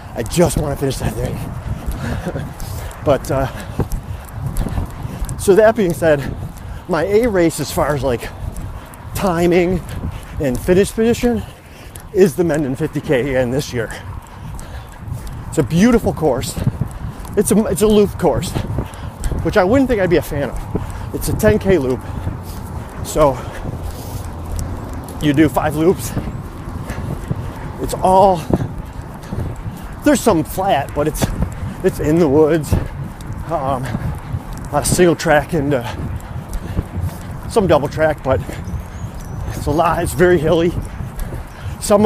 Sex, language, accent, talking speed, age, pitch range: male, English, American, 125 wpm, 40-59, 105-170 Hz